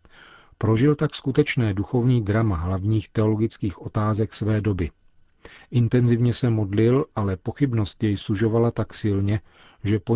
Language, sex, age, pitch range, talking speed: Czech, male, 40-59, 100-115 Hz, 125 wpm